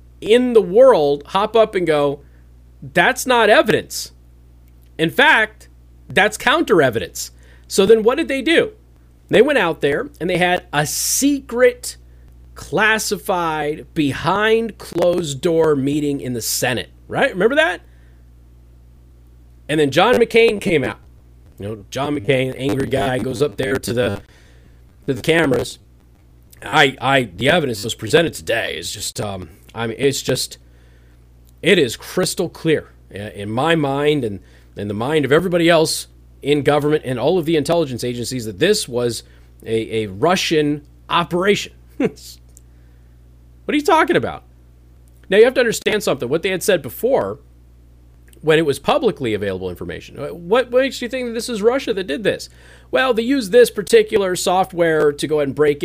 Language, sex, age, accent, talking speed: English, male, 30-49, American, 160 wpm